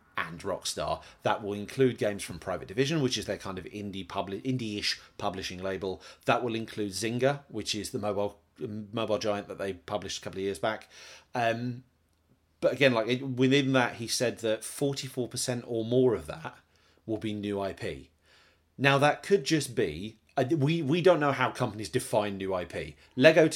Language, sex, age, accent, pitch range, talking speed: English, male, 30-49, British, 100-130 Hz, 185 wpm